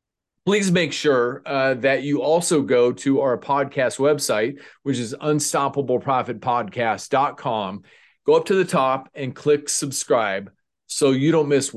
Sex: male